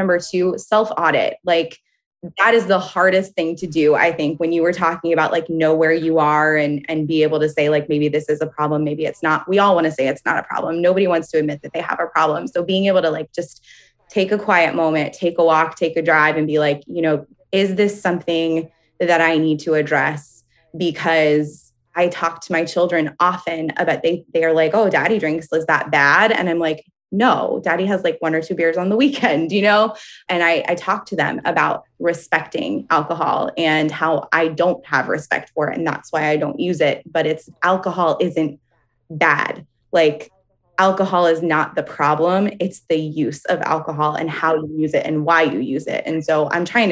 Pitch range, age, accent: 155-175 Hz, 20-39, American